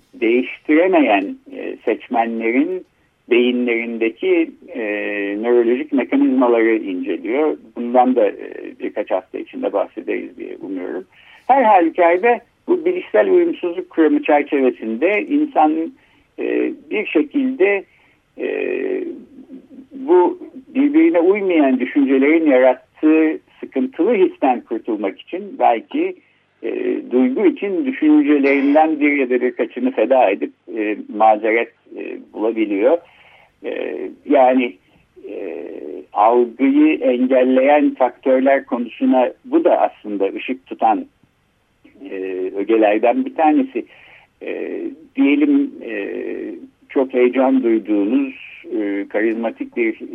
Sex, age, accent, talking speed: male, 60-79, native, 85 wpm